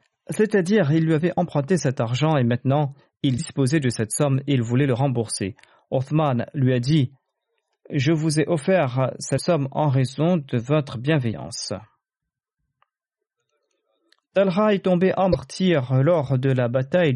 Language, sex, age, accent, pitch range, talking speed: French, male, 40-59, French, 125-160 Hz, 150 wpm